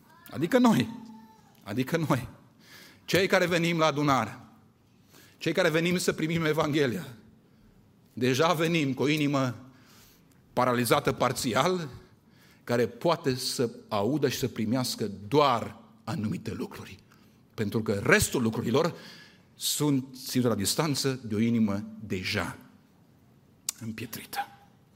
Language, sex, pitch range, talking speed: Romanian, male, 120-165 Hz, 110 wpm